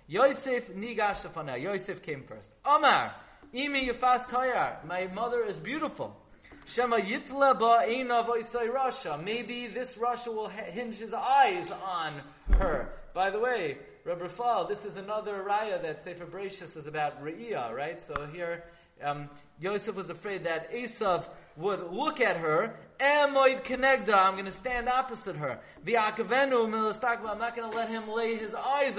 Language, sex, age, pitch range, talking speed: English, male, 30-49, 170-235 Hz, 120 wpm